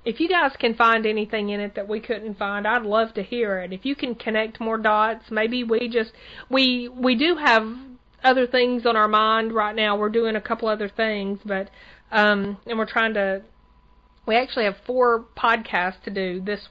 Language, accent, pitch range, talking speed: English, American, 205-235 Hz, 205 wpm